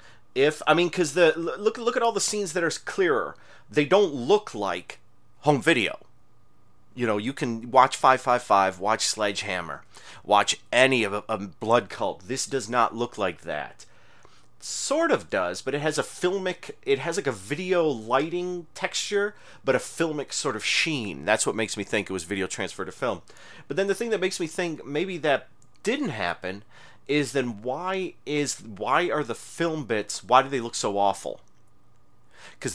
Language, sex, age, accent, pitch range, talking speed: English, male, 30-49, American, 105-165 Hz, 185 wpm